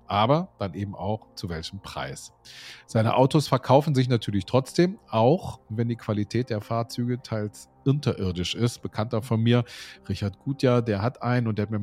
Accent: German